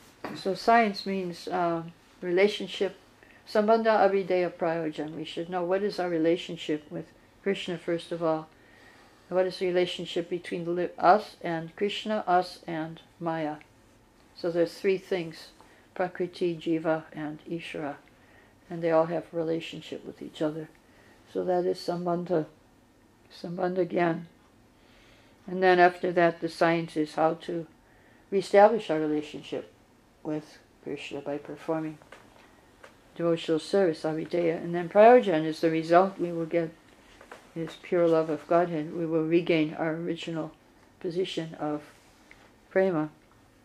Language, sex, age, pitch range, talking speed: English, female, 60-79, 160-180 Hz, 130 wpm